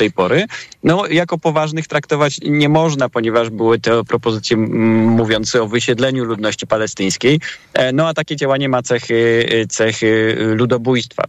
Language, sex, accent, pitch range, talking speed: Polish, male, native, 105-125 Hz, 135 wpm